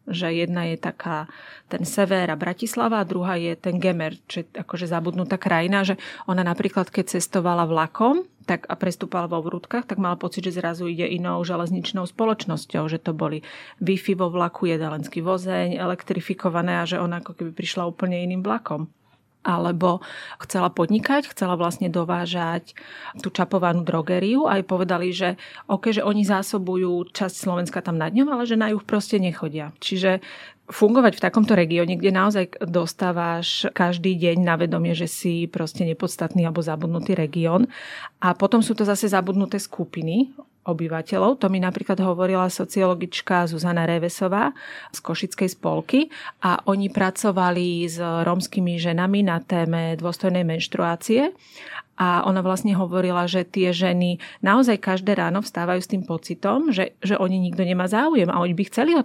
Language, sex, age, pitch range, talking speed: Slovak, female, 30-49, 175-195 Hz, 160 wpm